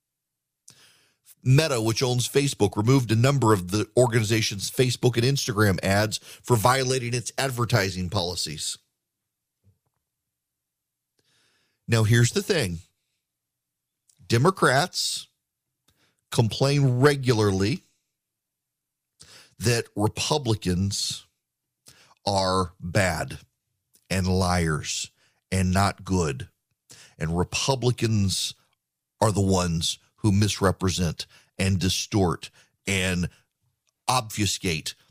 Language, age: English, 40-59